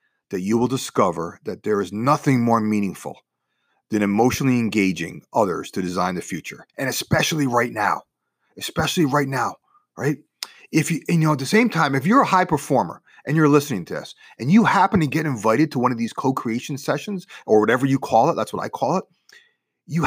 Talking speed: 200 wpm